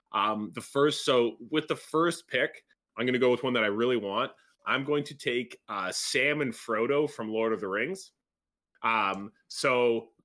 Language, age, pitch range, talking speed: English, 20-39, 115-135 Hz, 200 wpm